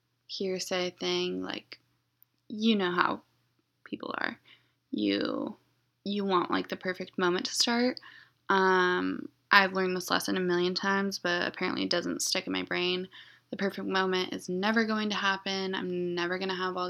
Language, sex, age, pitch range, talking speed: English, female, 20-39, 175-210 Hz, 165 wpm